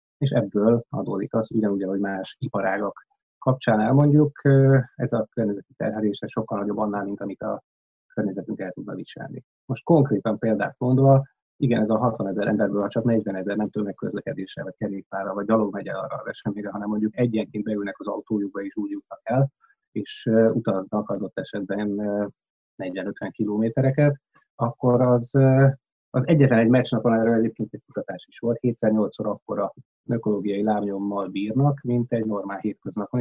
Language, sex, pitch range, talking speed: Hungarian, male, 100-125 Hz, 160 wpm